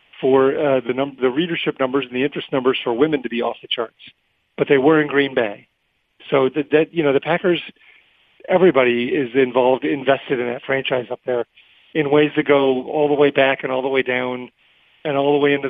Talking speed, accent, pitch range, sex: 220 wpm, American, 130-150 Hz, male